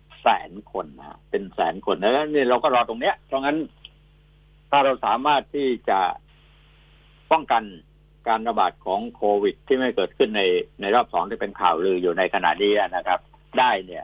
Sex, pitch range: male, 115-150 Hz